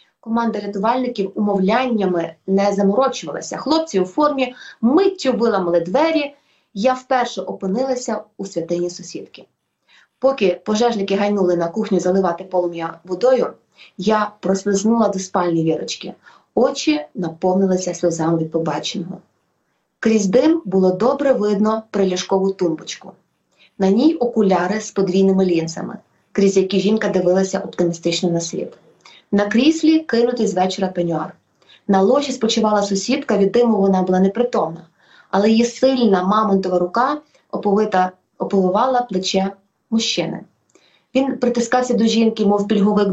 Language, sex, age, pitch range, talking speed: English, female, 20-39, 185-245 Hz, 115 wpm